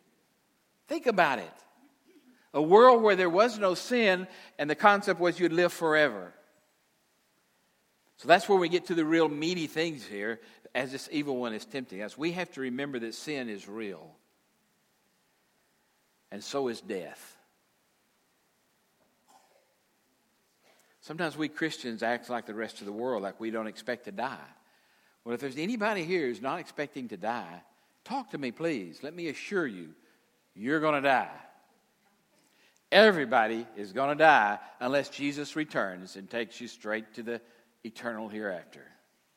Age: 60-79